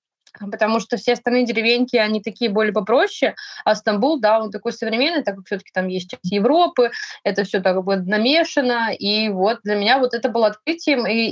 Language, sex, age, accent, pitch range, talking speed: Russian, female, 20-39, native, 205-265 Hz, 200 wpm